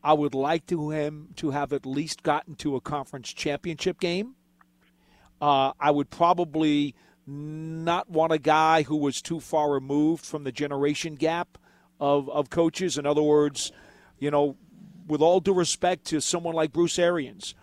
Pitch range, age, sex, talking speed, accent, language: 150-200 Hz, 50-69, male, 165 wpm, American, English